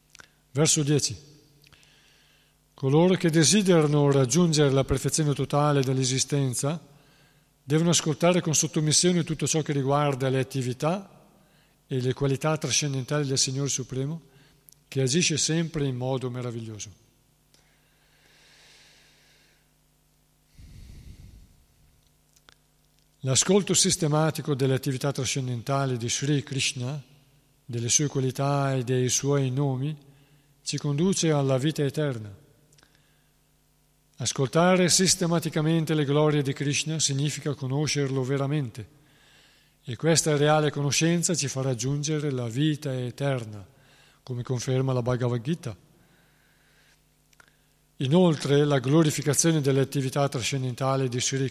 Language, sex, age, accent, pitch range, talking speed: Italian, male, 50-69, native, 130-150 Hz, 100 wpm